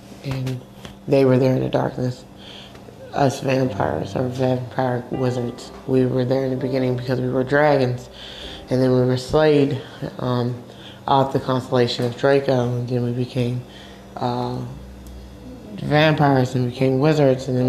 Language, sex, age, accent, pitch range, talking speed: English, male, 20-39, American, 125-140 Hz, 150 wpm